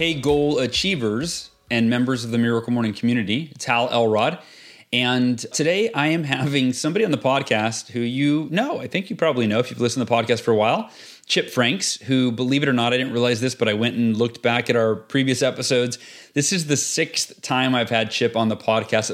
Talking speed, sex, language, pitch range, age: 220 wpm, male, English, 120-145 Hz, 30-49